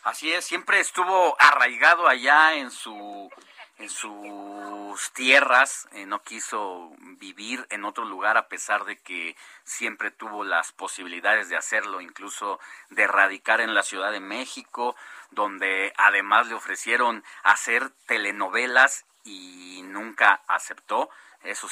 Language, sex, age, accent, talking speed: Spanish, male, 40-59, Mexican, 125 wpm